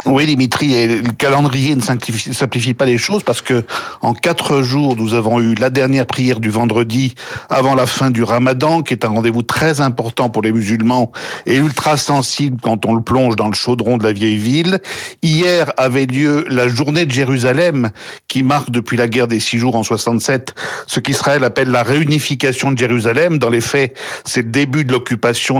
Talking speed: 190 wpm